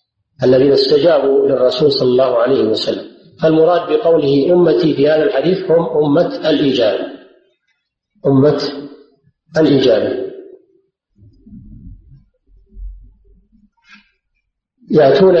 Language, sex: Arabic, male